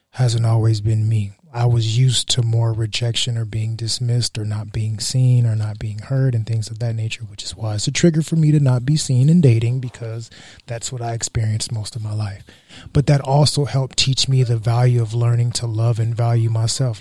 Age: 30-49